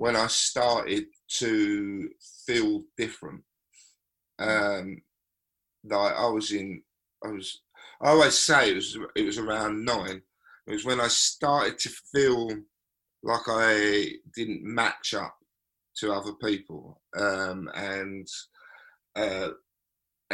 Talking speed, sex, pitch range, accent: 120 wpm, male, 100-125 Hz, British